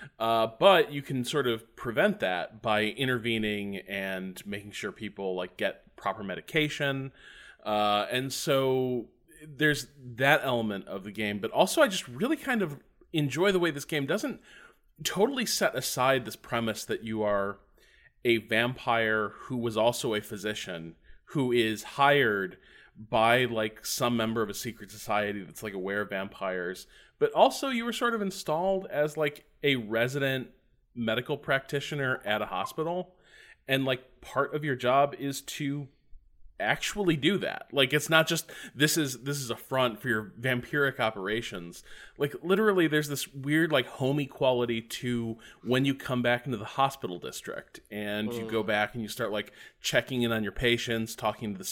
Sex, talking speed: male, 170 wpm